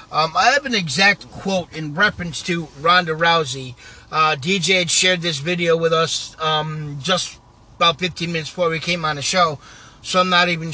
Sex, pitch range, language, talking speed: male, 155-200 Hz, English, 190 wpm